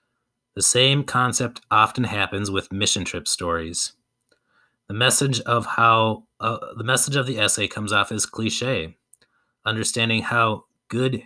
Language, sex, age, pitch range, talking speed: English, male, 30-49, 100-130 Hz, 140 wpm